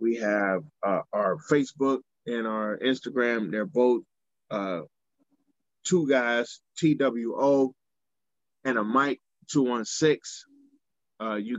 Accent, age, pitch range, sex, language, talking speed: American, 20-39, 115-145 Hz, male, English, 100 wpm